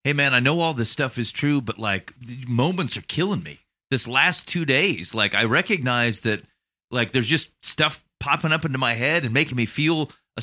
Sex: male